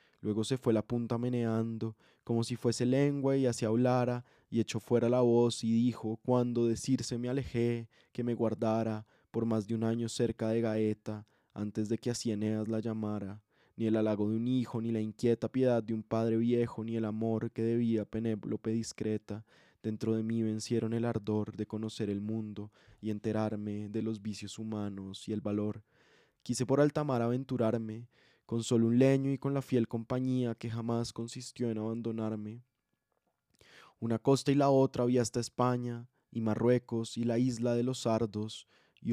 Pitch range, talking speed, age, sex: 110-120 Hz, 180 wpm, 20-39, male